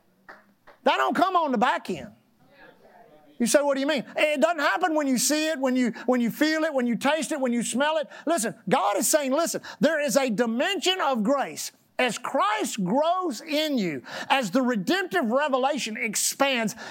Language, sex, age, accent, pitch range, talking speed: English, male, 50-69, American, 240-315 Hz, 190 wpm